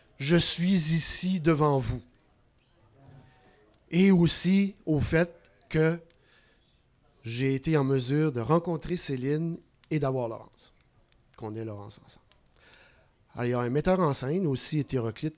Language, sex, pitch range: French, male, 125-180 Hz